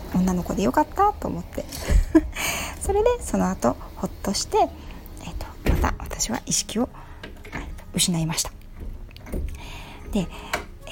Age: 40-59